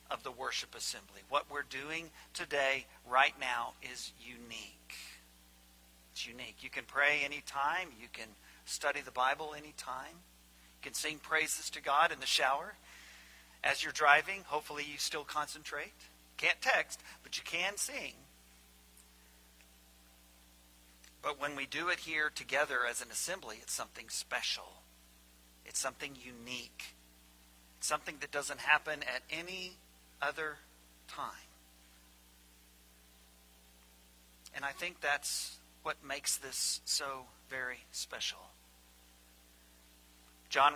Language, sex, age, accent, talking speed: English, male, 50-69, American, 120 wpm